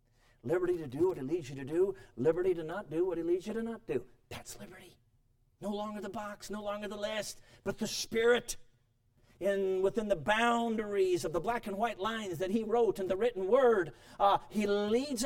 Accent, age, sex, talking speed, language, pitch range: American, 50-69, male, 205 wpm, English, 120-200 Hz